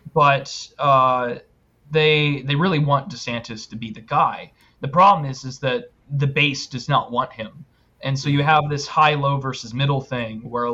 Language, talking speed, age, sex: English, 180 wpm, 20-39, male